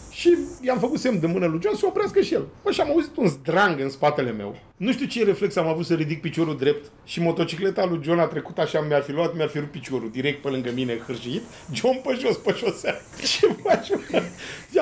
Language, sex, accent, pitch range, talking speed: Romanian, male, native, 160-260 Hz, 225 wpm